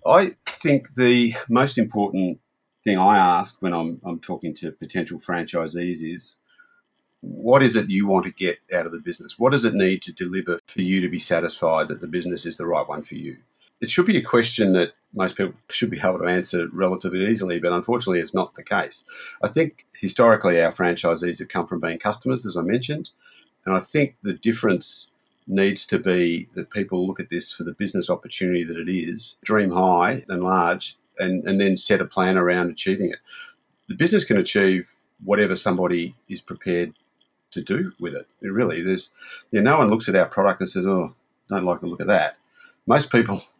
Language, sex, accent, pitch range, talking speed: English, male, Australian, 90-115 Hz, 205 wpm